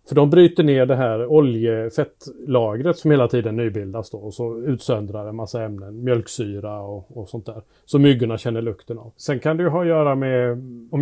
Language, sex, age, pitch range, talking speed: Swedish, male, 30-49, 115-150 Hz, 200 wpm